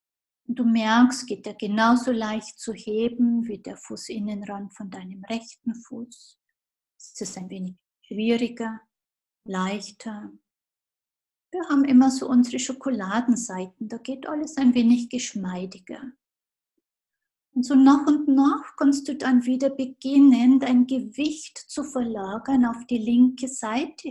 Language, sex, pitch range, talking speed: German, female, 225-265 Hz, 130 wpm